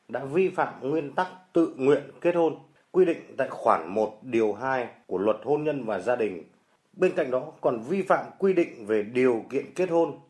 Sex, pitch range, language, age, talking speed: male, 120-165 Hz, Vietnamese, 30-49, 210 wpm